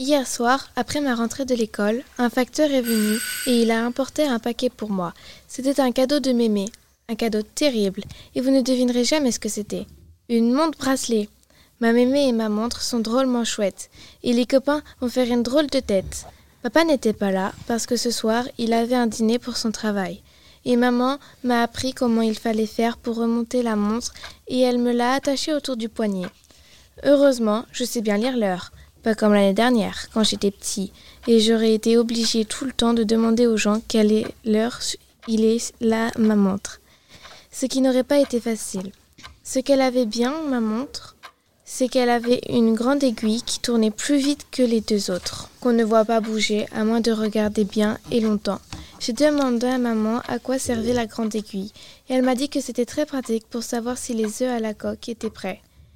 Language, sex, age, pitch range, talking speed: French, female, 20-39, 220-255 Hz, 200 wpm